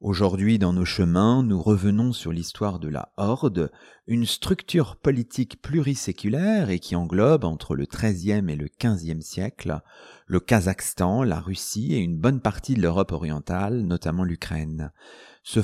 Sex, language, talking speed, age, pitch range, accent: male, French, 150 wpm, 40-59, 90-125 Hz, French